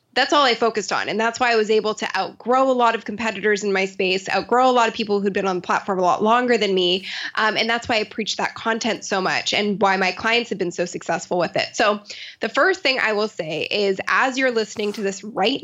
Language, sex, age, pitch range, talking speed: English, female, 10-29, 195-250 Hz, 265 wpm